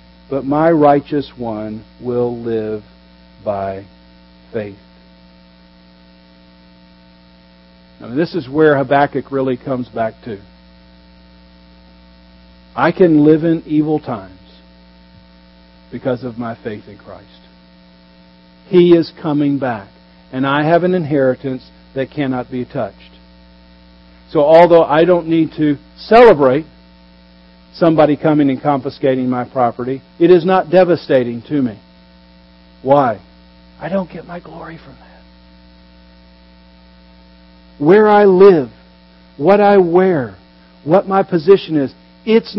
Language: English